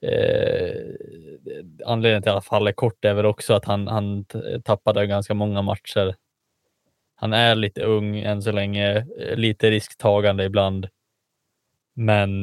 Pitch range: 100-115 Hz